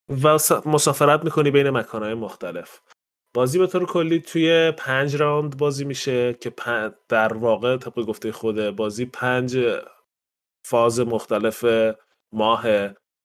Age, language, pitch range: 20-39, Persian, 115-145 Hz